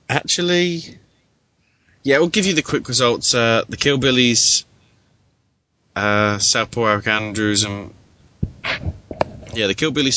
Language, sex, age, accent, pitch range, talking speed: English, male, 20-39, British, 95-115 Hz, 110 wpm